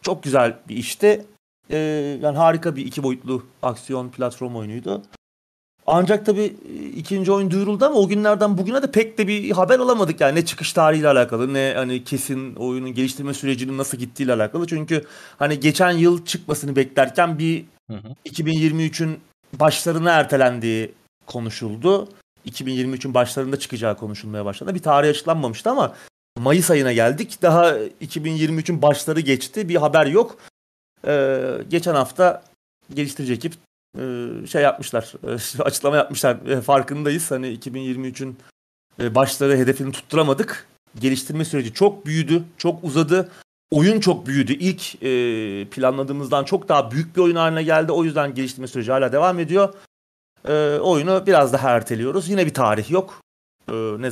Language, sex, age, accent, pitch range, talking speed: Turkish, male, 30-49, native, 130-170 Hz, 140 wpm